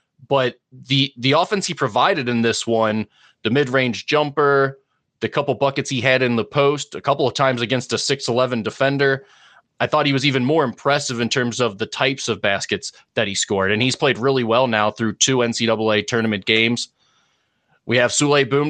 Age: 30-49